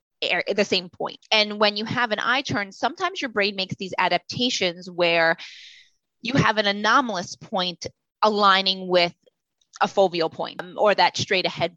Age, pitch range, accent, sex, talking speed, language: 20-39, 190-235 Hz, American, female, 170 wpm, English